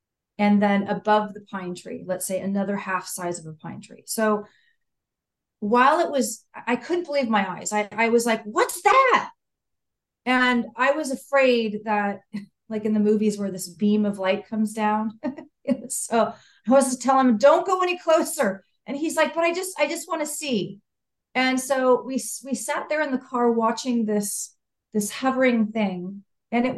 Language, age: English, 40-59